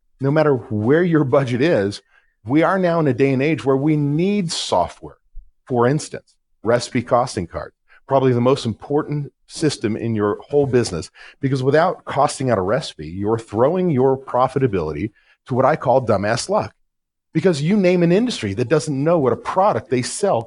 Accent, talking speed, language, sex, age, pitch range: American, 180 wpm, English, male, 40-59, 120-160 Hz